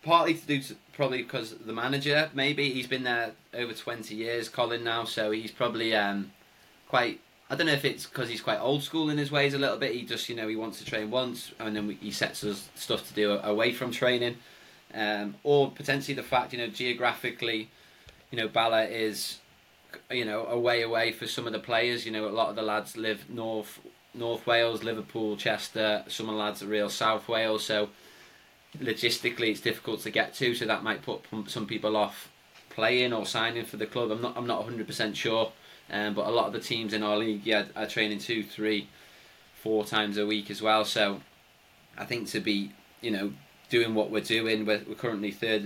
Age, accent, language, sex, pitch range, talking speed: 20-39, British, English, male, 105-120 Hz, 215 wpm